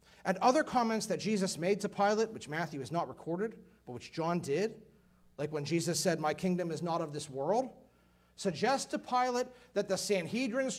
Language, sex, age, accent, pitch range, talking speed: English, male, 40-59, American, 170-240 Hz, 190 wpm